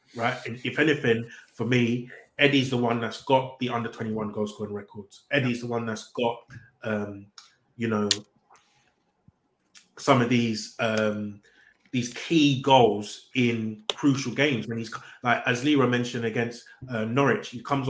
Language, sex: English, male